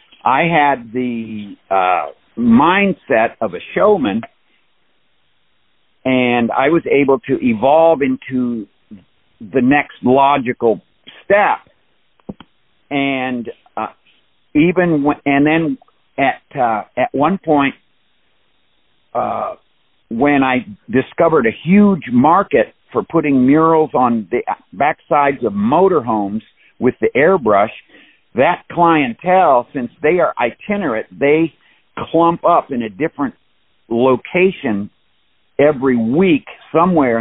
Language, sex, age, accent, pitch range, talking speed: English, male, 50-69, American, 120-160 Hz, 105 wpm